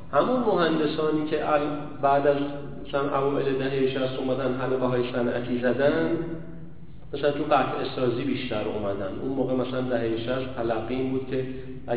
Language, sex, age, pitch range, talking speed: Persian, male, 40-59, 120-175 Hz, 130 wpm